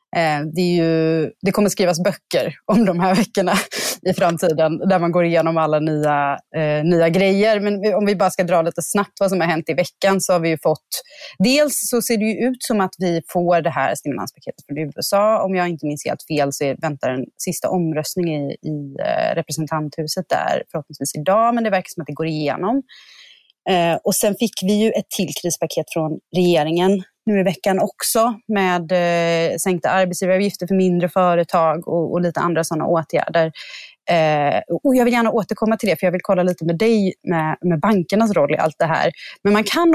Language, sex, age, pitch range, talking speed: Swedish, female, 30-49, 165-215 Hz, 200 wpm